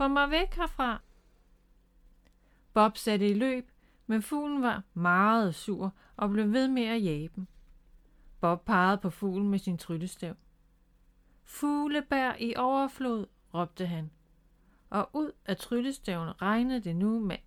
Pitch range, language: 175-245 Hz, Danish